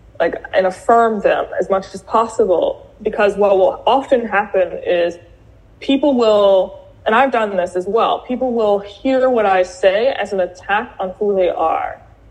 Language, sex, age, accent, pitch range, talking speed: English, female, 20-39, American, 190-245 Hz, 170 wpm